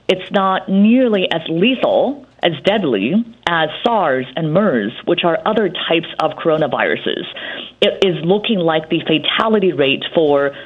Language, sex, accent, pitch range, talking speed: English, female, American, 170-220 Hz, 140 wpm